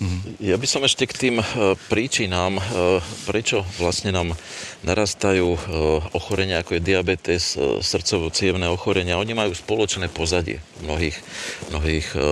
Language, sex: Slovak, male